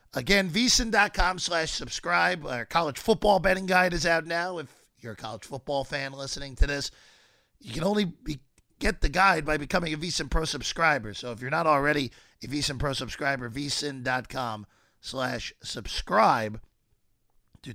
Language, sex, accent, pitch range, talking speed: English, male, American, 130-180 Hz, 155 wpm